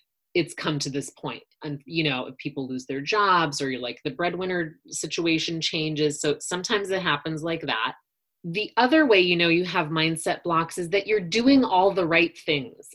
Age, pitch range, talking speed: 30-49, 150-185 Hz, 200 wpm